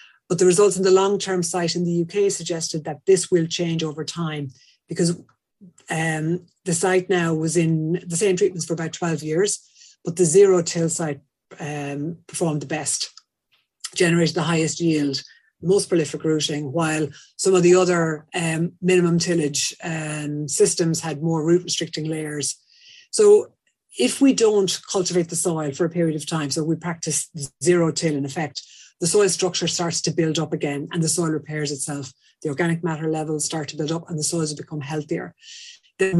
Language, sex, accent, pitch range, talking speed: English, female, Irish, 155-185 Hz, 180 wpm